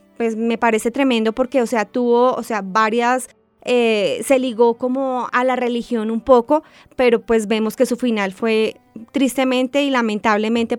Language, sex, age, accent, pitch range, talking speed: Spanish, female, 20-39, Colombian, 230-275 Hz, 165 wpm